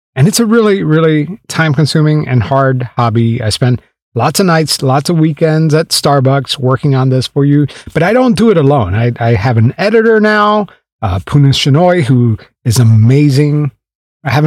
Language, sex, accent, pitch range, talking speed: English, male, American, 135-185 Hz, 185 wpm